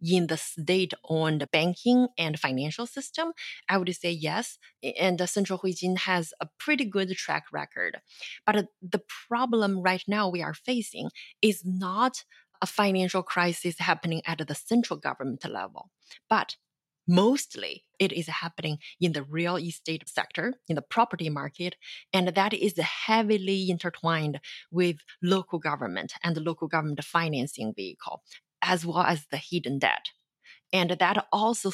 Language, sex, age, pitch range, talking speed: English, female, 20-39, 160-205 Hz, 145 wpm